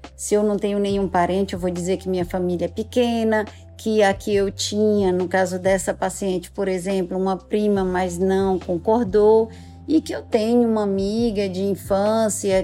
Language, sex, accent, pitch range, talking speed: Portuguese, female, Brazilian, 185-215 Hz, 175 wpm